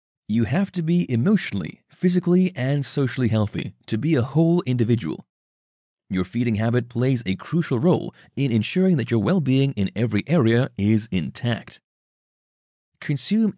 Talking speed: 140 wpm